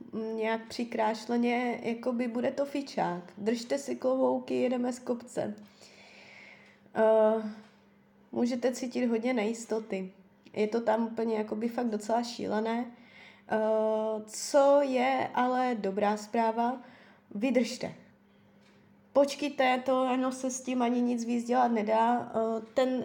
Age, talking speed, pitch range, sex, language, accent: 20-39, 115 wpm, 220-255 Hz, female, Czech, native